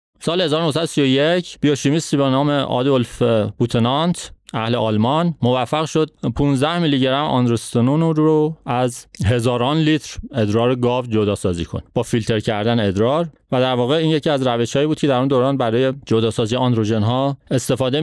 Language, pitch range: Persian, 120-145 Hz